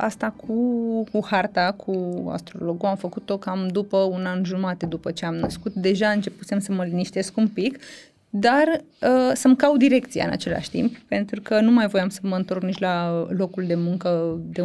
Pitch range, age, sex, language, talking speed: 195-260 Hz, 20-39, female, Romanian, 185 wpm